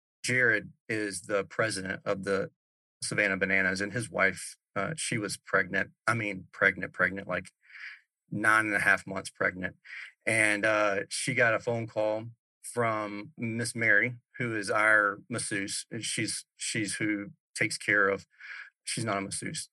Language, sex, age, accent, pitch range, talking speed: English, male, 40-59, American, 105-120 Hz, 160 wpm